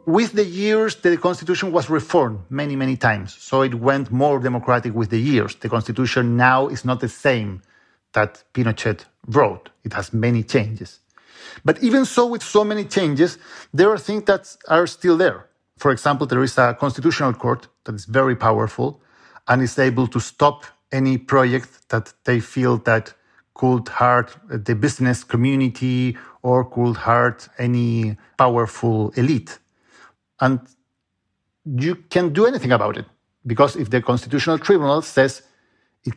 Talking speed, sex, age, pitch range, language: 155 wpm, male, 50-69, 120-160 Hz, English